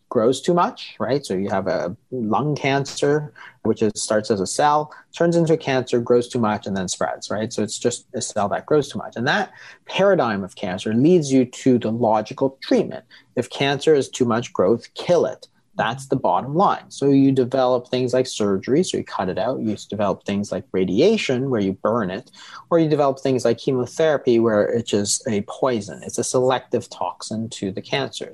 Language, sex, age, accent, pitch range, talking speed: English, male, 30-49, American, 110-140 Hz, 205 wpm